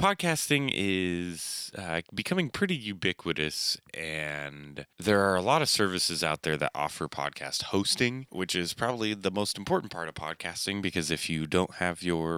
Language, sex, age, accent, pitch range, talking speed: English, male, 20-39, American, 80-110 Hz, 165 wpm